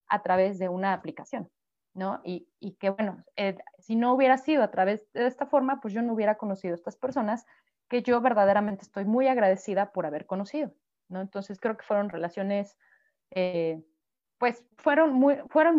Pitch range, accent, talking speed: 200-280 Hz, Mexican, 185 wpm